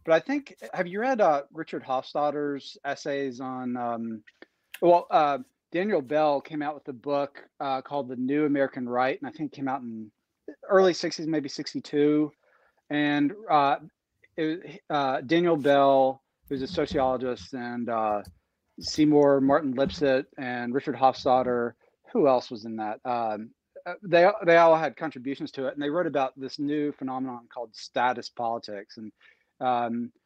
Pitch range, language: 125-150 Hz, English